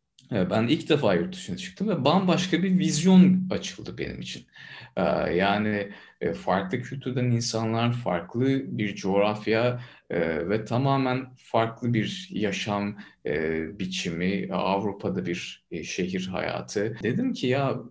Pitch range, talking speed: 100-135 Hz, 110 wpm